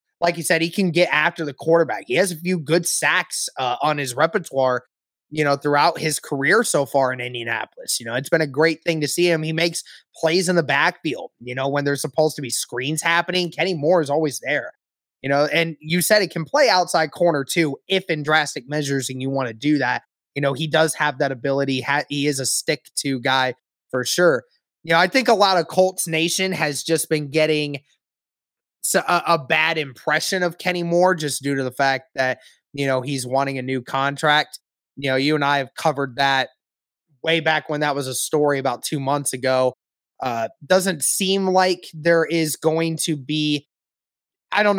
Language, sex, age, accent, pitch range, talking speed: English, male, 20-39, American, 140-170 Hz, 210 wpm